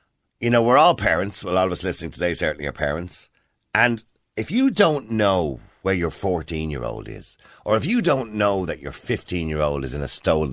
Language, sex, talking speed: English, male, 200 wpm